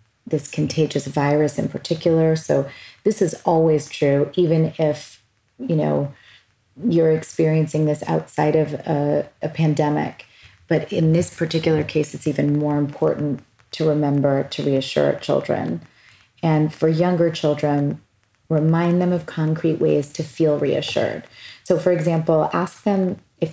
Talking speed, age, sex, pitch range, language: 140 wpm, 30-49, female, 145-170 Hz, English